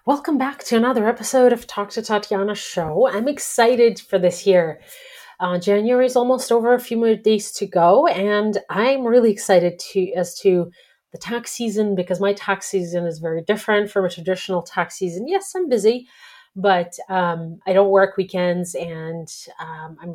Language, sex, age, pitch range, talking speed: English, female, 30-49, 180-230 Hz, 180 wpm